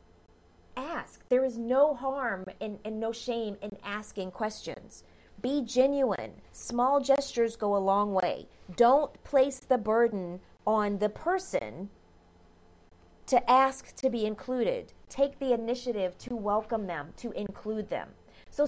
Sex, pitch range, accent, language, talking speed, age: female, 205-270 Hz, American, English, 135 wpm, 30-49